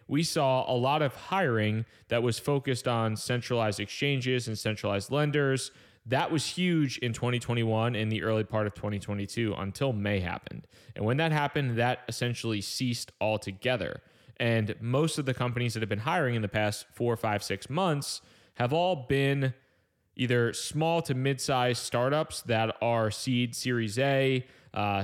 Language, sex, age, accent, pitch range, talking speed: English, male, 20-39, American, 110-130 Hz, 160 wpm